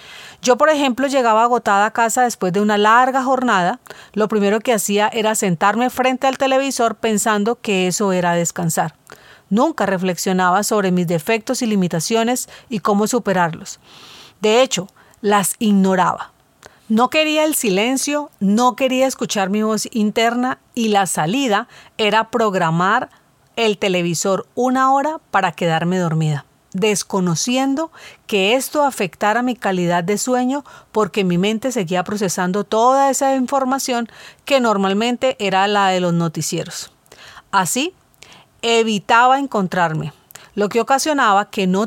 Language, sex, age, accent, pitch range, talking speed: Spanish, female, 40-59, Colombian, 190-250 Hz, 135 wpm